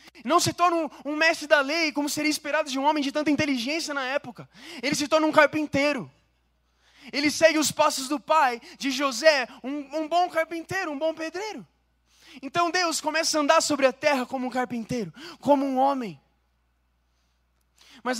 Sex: male